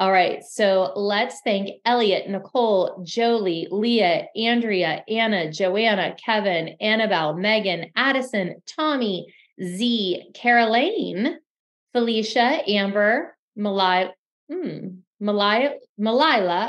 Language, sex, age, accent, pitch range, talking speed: English, female, 30-49, American, 195-250 Hz, 90 wpm